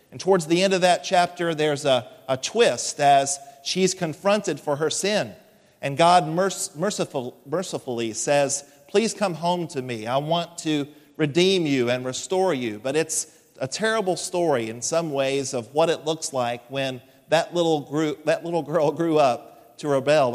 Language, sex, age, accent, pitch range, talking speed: English, male, 40-59, American, 145-180 Hz, 165 wpm